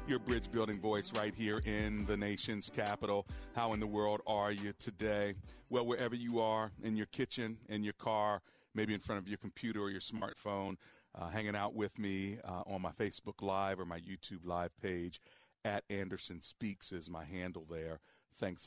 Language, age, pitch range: English, 40-59, 90-115 Hz